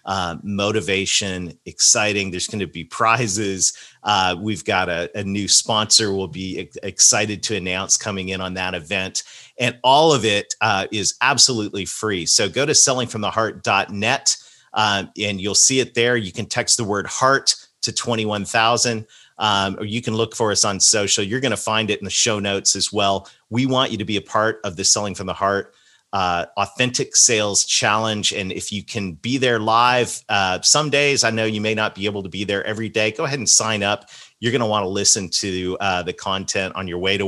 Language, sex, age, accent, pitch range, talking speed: English, male, 40-59, American, 95-125 Hz, 205 wpm